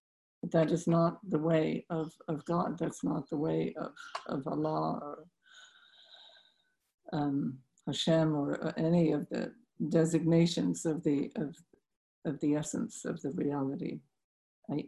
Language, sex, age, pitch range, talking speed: English, female, 60-79, 160-190 Hz, 135 wpm